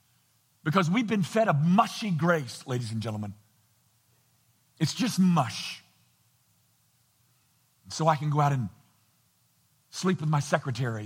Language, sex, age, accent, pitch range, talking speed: English, male, 50-69, American, 115-145 Hz, 125 wpm